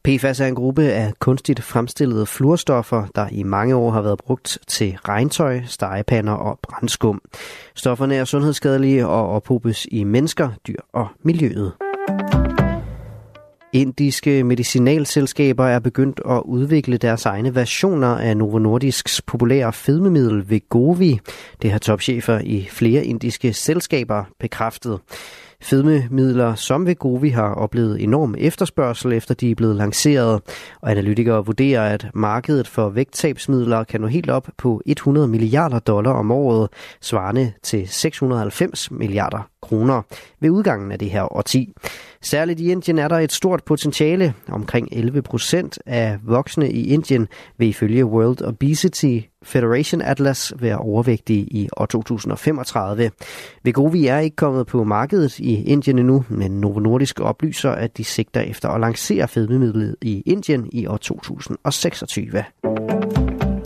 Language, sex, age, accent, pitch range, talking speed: Danish, male, 30-49, native, 110-140 Hz, 140 wpm